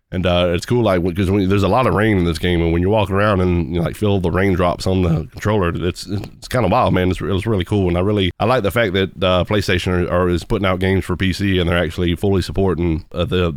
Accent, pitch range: American, 85-100 Hz